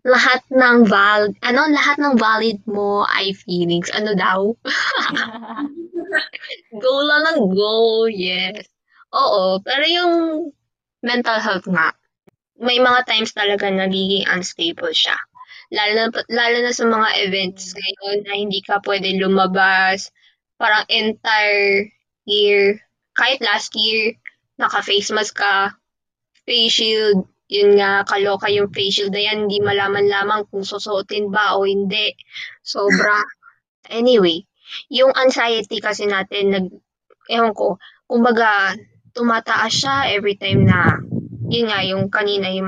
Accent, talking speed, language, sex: native, 120 wpm, Filipino, female